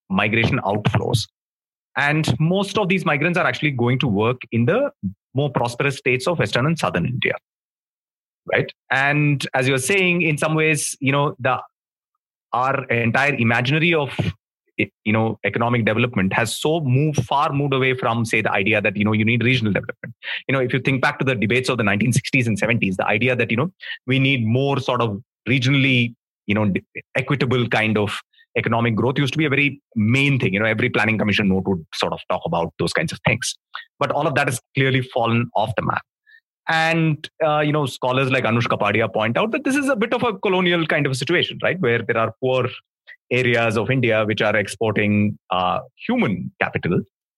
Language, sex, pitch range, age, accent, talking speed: English, male, 115-150 Hz, 30-49, Indian, 200 wpm